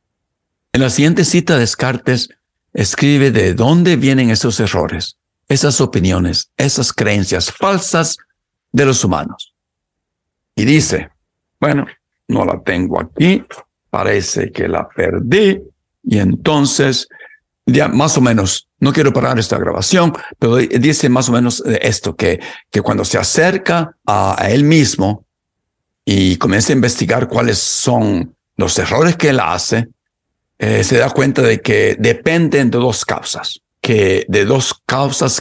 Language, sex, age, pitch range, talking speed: Spanish, male, 60-79, 100-155 Hz, 135 wpm